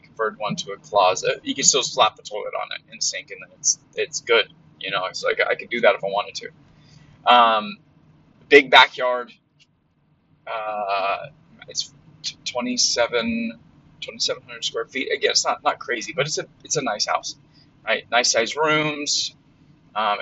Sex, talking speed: male, 165 wpm